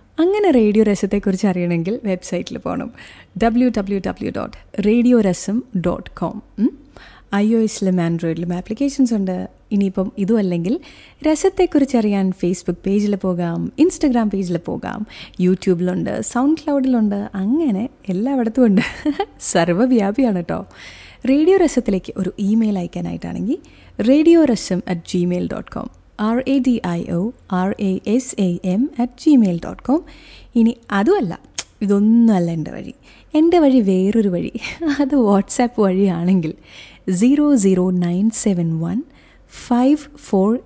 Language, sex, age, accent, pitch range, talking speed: Malayalam, female, 30-49, native, 190-265 Hz, 110 wpm